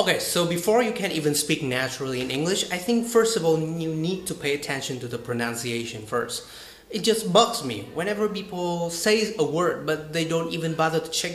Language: Vietnamese